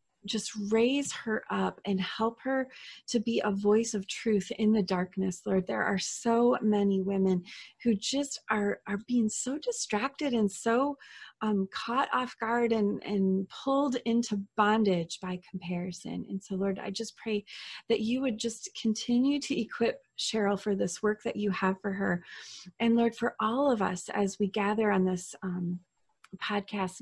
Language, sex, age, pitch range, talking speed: English, female, 30-49, 195-240 Hz, 170 wpm